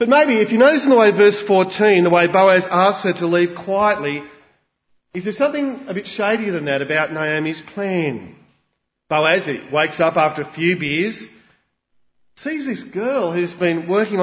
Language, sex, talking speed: English, male, 175 wpm